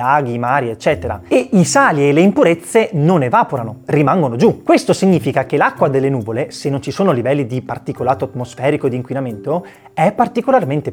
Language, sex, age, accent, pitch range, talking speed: Italian, male, 30-49, native, 135-195 Hz, 170 wpm